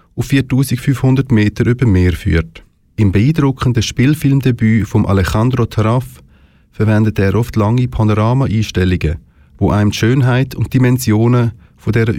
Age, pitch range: 30-49, 100-125 Hz